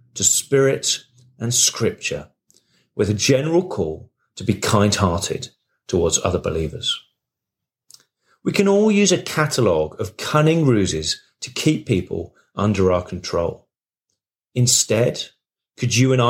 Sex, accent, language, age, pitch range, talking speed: male, British, English, 40-59, 100-140 Hz, 125 wpm